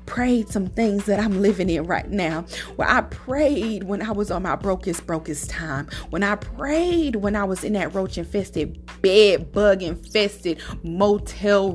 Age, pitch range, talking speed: 30-49, 185-230 Hz, 175 wpm